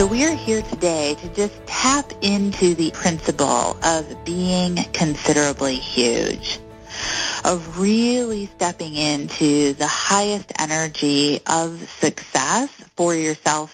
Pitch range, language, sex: 155-200 Hz, English, female